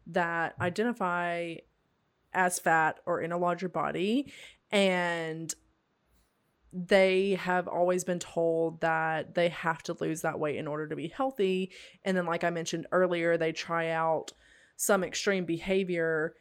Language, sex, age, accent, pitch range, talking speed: English, female, 20-39, American, 165-190 Hz, 145 wpm